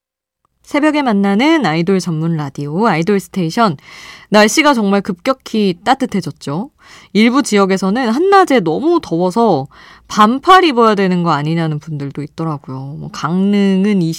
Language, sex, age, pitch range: Korean, female, 20-39, 160-220 Hz